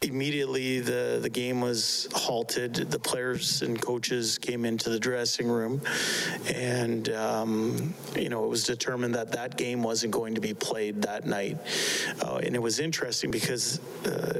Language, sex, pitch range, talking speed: English, male, 115-125 Hz, 165 wpm